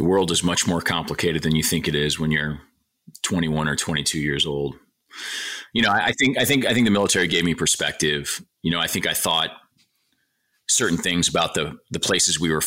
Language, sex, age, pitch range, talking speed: English, male, 30-49, 75-85 Hz, 220 wpm